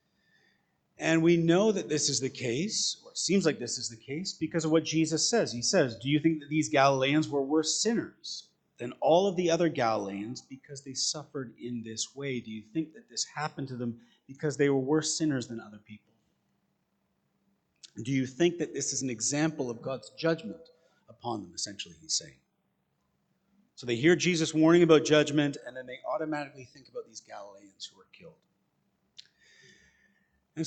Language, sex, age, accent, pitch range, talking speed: English, male, 30-49, American, 130-165 Hz, 185 wpm